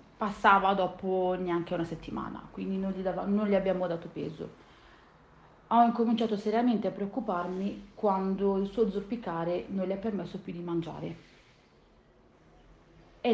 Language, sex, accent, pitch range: Italian, female, native, 170-205 Hz